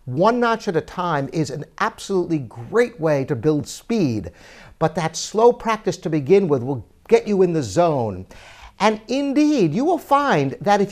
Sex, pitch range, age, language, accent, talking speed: male, 150-215 Hz, 50-69, English, American, 180 wpm